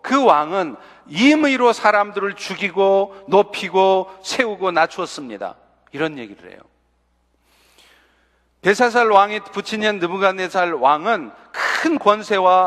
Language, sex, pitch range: Korean, male, 175-220 Hz